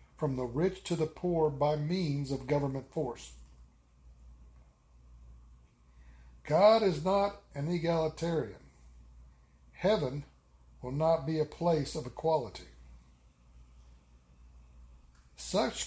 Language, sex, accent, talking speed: English, male, American, 95 wpm